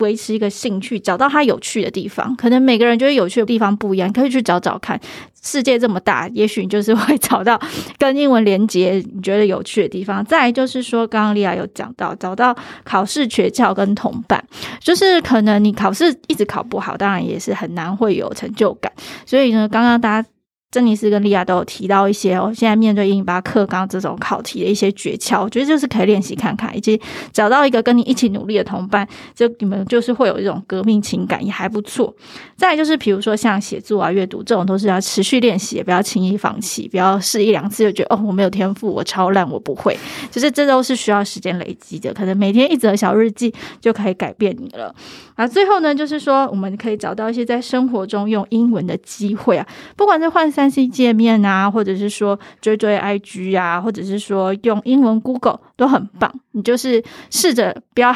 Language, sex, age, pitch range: Chinese, female, 20-39, 195-245 Hz